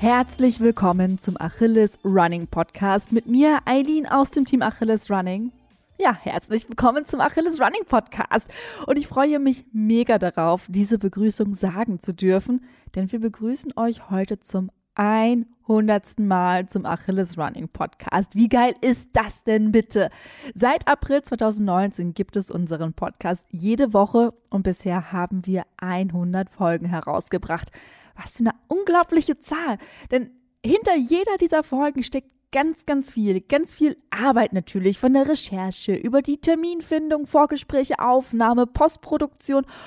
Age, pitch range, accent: 20-39, 195-255 Hz, German